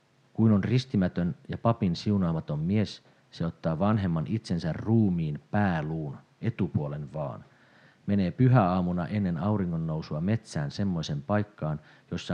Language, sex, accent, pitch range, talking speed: Finnish, male, native, 85-110 Hz, 115 wpm